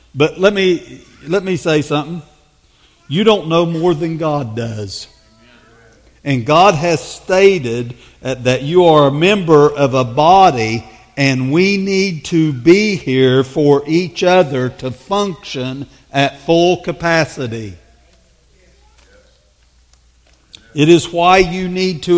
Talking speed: 125 wpm